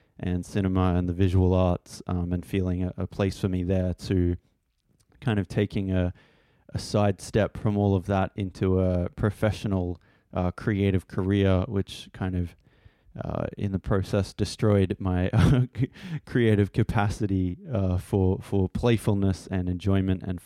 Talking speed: 145 wpm